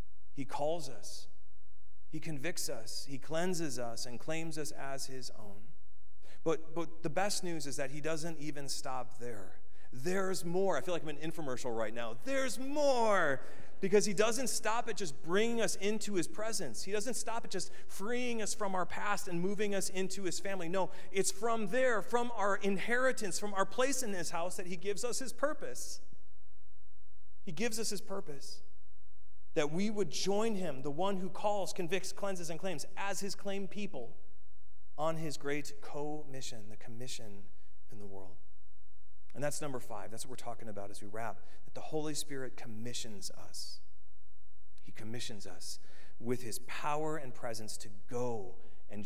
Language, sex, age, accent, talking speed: English, male, 40-59, American, 180 wpm